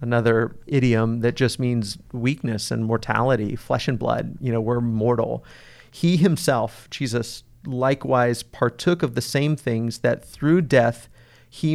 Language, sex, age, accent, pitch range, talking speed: English, male, 40-59, American, 120-140 Hz, 145 wpm